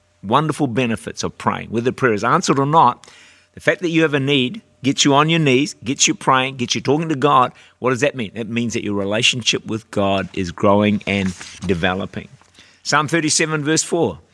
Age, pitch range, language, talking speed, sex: 50-69, 105-150 Hz, English, 210 wpm, male